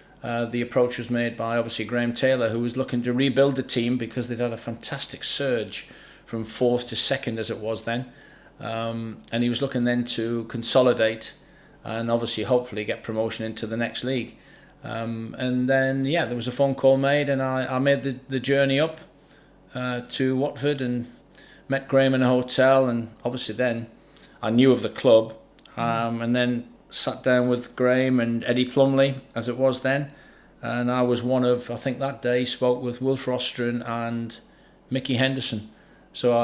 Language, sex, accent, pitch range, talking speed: English, male, British, 115-130 Hz, 185 wpm